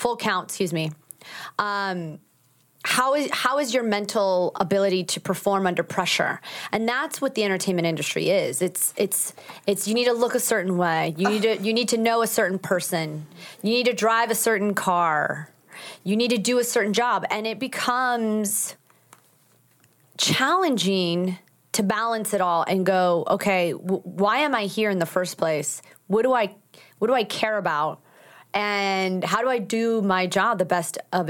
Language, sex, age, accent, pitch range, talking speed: English, female, 30-49, American, 180-215 Hz, 180 wpm